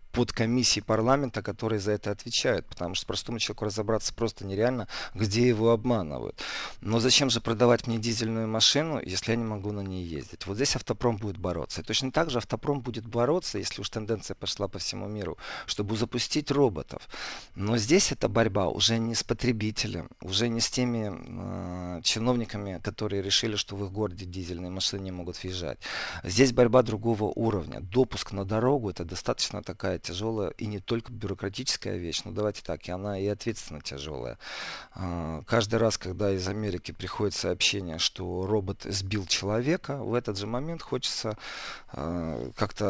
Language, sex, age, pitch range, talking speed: Russian, male, 40-59, 95-115 Hz, 170 wpm